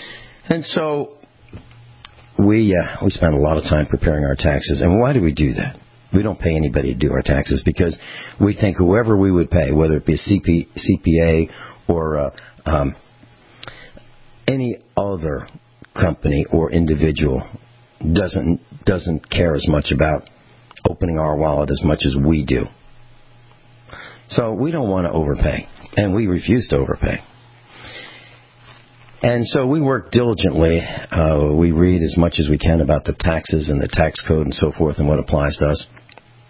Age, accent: 60-79, American